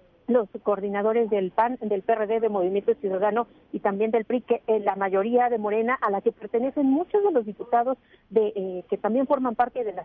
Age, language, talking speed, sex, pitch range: 50-69, Spanish, 210 wpm, female, 205-245 Hz